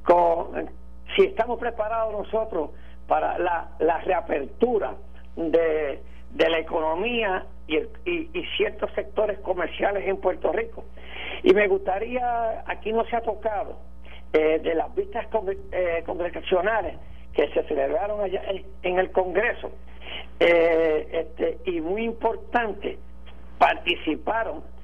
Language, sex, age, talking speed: Spanish, male, 60-79, 125 wpm